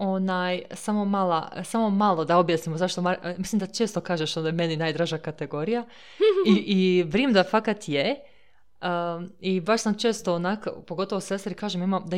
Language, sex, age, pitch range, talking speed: Croatian, female, 20-39, 165-200 Hz, 170 wpm